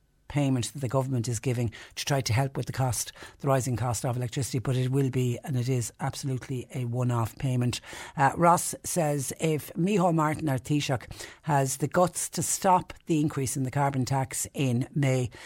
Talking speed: 195 wpm